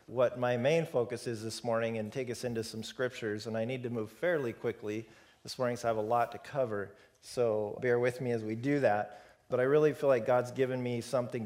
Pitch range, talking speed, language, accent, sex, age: 115-130 Hz, 240 wpm, English, American, male, 40-59